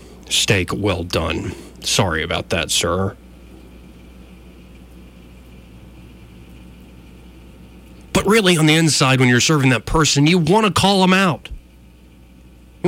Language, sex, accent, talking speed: English, male, American, 110 wpm